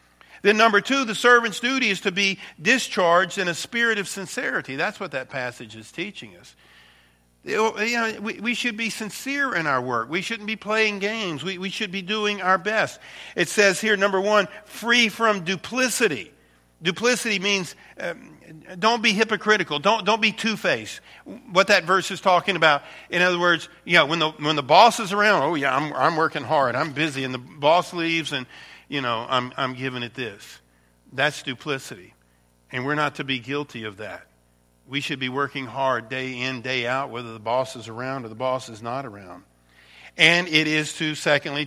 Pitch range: 130-195 Hz